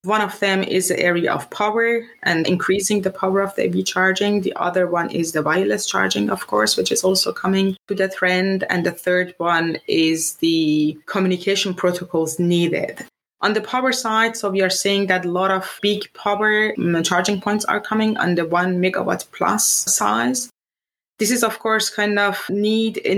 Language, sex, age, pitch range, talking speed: English, female, 20-39, 180-205 Hz, 185 wpm